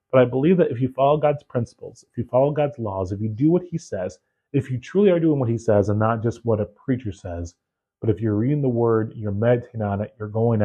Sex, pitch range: male, 105-130 Hz